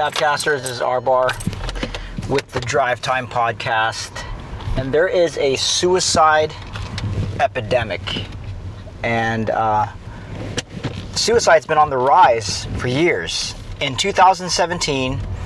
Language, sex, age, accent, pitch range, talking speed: English, male, 40-59, American, 105-150 Hz, 95 wpm